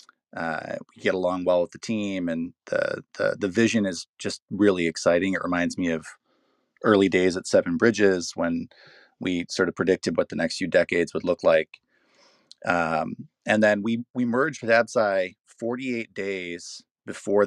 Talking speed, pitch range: 170 wpm, 85-105 Hz